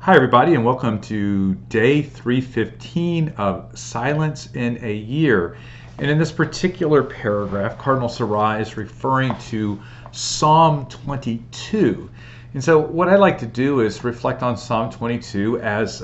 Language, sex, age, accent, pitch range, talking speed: English, male, 40-59, American, 110-130 Hz, 140 wpm